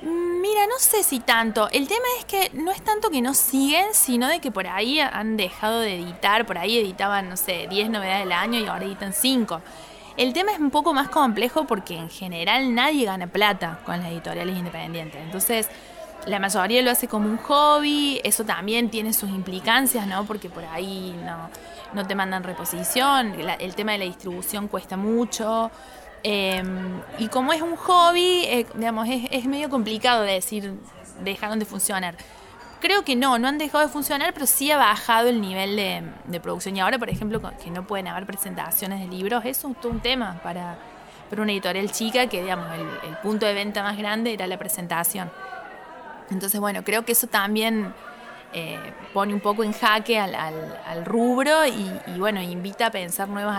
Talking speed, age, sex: 195 wpm, 20-39, female